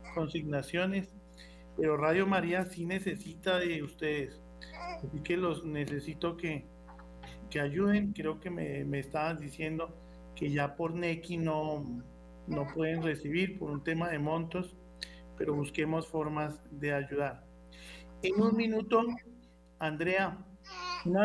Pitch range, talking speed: 145-175 Hz, 125 wpm